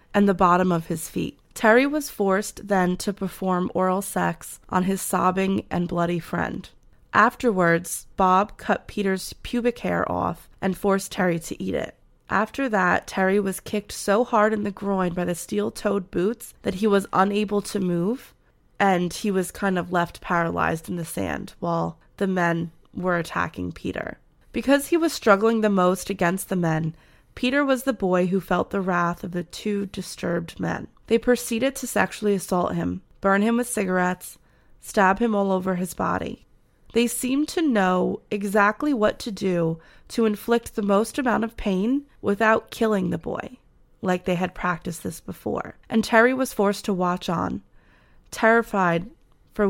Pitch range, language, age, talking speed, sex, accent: 180-220 Hz, English, 20-39, 170 wpm, female, American